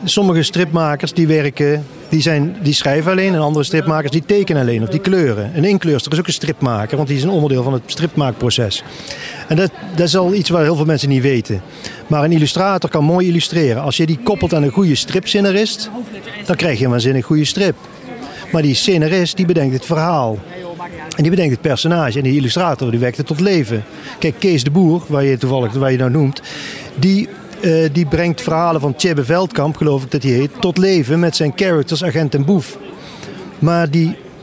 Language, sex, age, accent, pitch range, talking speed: Dutch, male, 40-59, Dutch, 145-180 Hz, 205 wpm